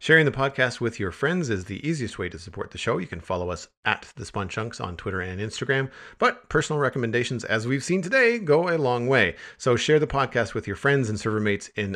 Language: English